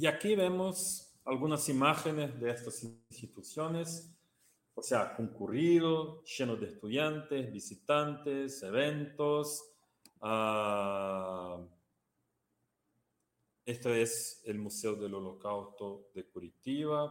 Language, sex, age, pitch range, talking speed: Portuguese, male, 40-59, 105-140 Hz, 90 wpm